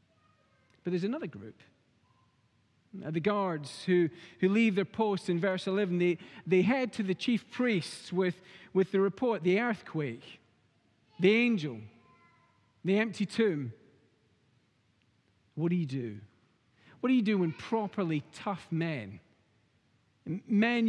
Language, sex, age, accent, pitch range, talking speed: English, male, 40-59, British, 130-195 Hz, 130 wpm